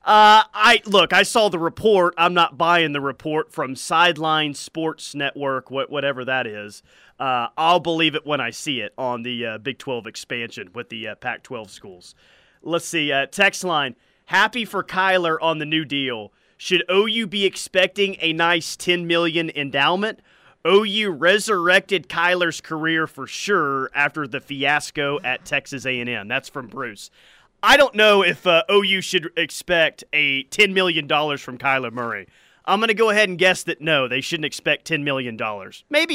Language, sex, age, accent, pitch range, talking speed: English, male, 30-49, American, 135-185 Hz, 175 wpm